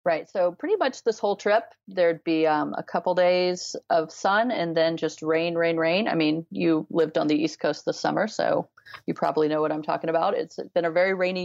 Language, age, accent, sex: English, 30-49, American, female